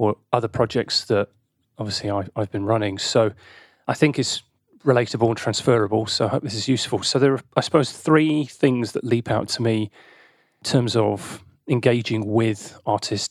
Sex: male